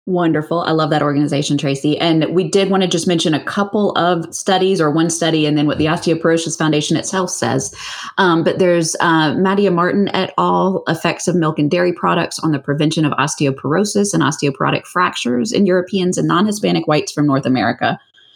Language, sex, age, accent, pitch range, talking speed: English, female, 20-39, American, 150-195 Hz, 195 wpm